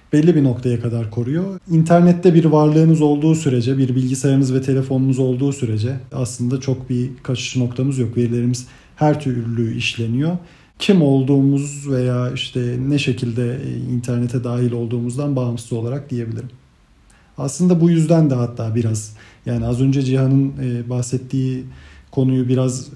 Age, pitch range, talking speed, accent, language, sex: 40-59, 125-140 Hz, 135 wpm, native, Turkish, male